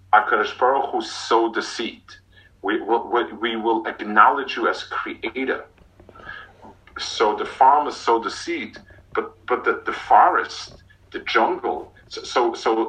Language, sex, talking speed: English, male, 155 wpm